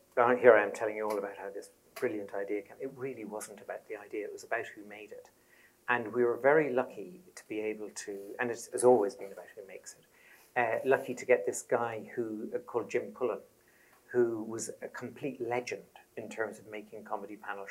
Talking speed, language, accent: 215 wpm, English, British